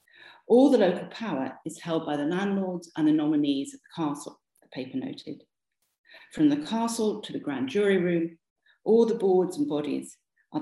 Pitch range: 175-290 Hz